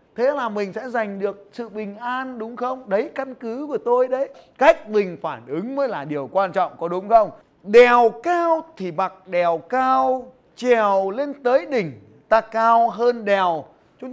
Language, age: Vietnamese, 20-39